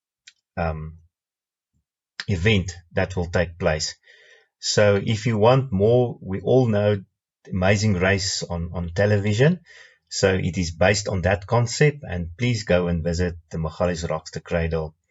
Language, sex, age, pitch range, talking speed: English, male, 30-49, 90-120 Hz, 145 wpm